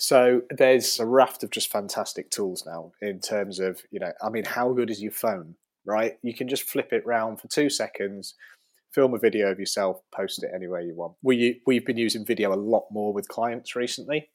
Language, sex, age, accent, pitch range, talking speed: English, male, 30-49, British, 100-120 Hz, 215 wpm